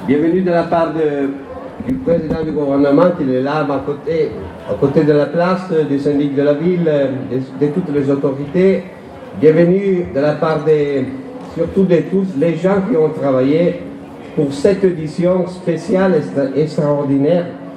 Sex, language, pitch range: male, Italian, 135-175 Hz